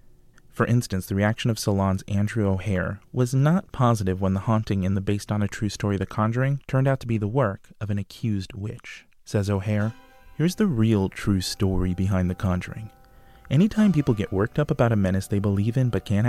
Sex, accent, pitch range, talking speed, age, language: male, American, 100-125 Hz, 205 wpm, 30-49, English